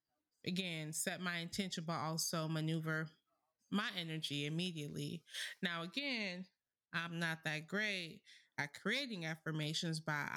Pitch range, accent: 165-215 Hz, American